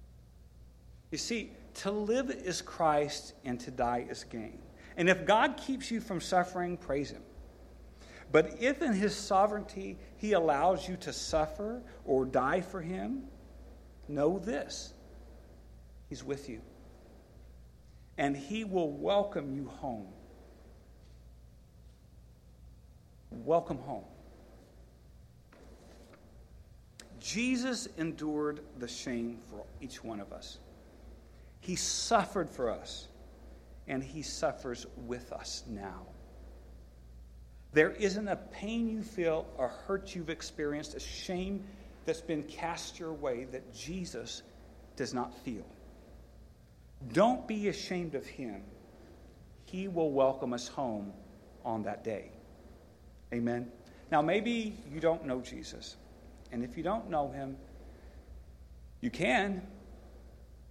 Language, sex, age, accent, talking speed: English, male, 50-69, American, 115 wpm